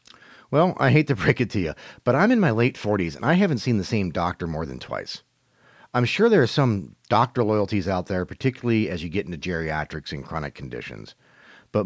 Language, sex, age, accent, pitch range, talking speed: English, male, 40-59, American, 90-125 Hz, 220 wpm